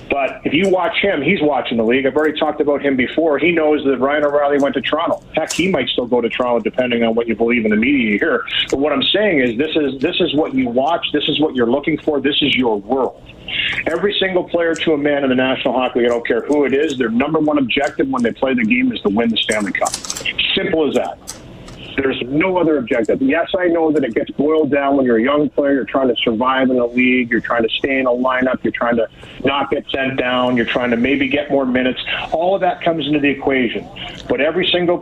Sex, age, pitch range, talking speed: male, 40-59, 125-155 Hz, 260 wpm